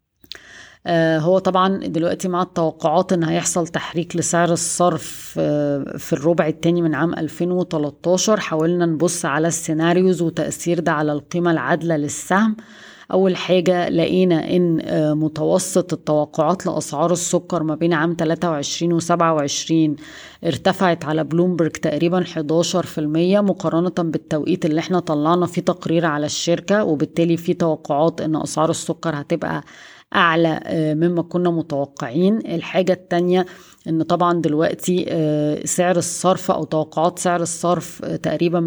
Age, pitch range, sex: 20-39, 155-175 Hz, female